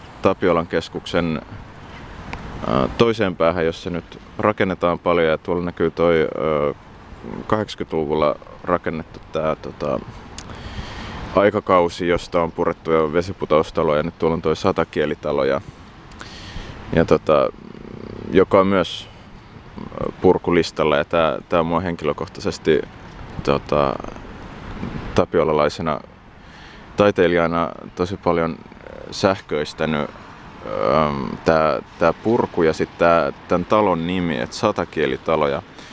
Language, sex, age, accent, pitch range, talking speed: Finnish, male, 20-39, native, 85-105 Hz, 95 wpm